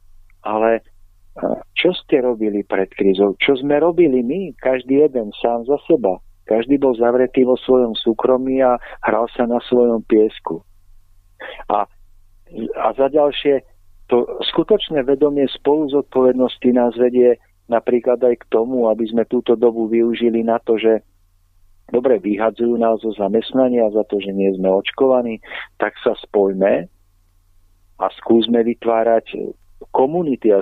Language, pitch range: Slovak, 90-125 Hz